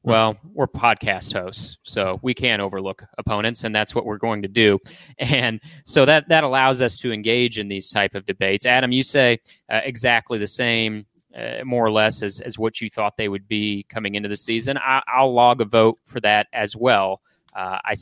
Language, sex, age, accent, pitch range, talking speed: English, male, 30-49, American, 100-120 Hz, 210 wpm